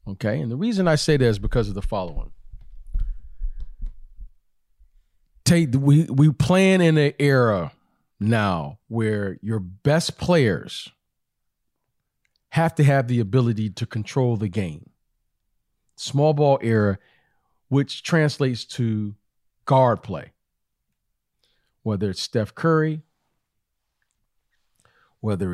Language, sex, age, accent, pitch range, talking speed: English, male, 40-59, American, 100-135 Hz, 110 wpm